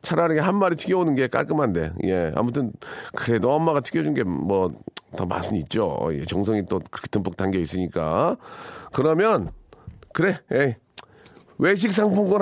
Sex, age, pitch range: male, 40-59, 110-185 Hz